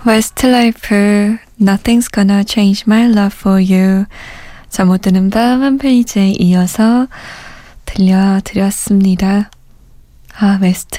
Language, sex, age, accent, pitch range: Korean, female, 20-39, native, 185-230 Hz